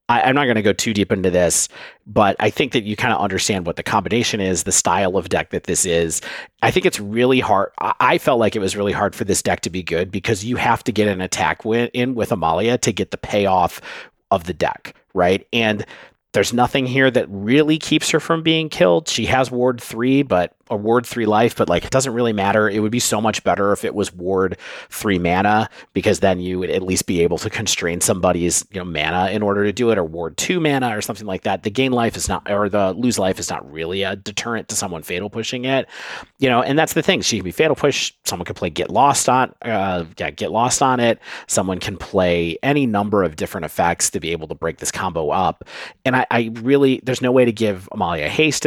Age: 40-59